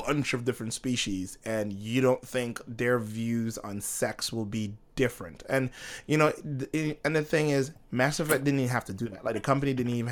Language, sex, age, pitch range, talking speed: English, male, 20-39, 105-130 Hz, 215 wpm